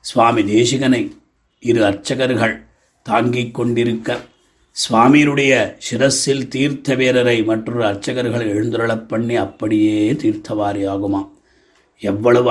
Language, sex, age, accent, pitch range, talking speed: Tamil, male, 30-49, native, 110-135 Hz, 70 wpm